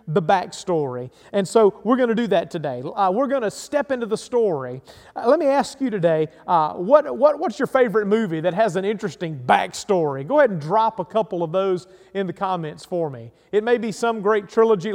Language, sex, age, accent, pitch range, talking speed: English, male, 40-59, American, 175-230 Hz, 220 wpm